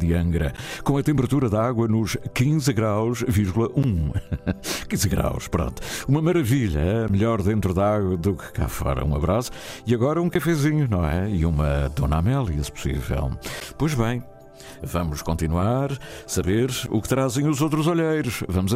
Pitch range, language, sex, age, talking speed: 85-125 Hz, Portuguese, male, 60-79, 160 wpm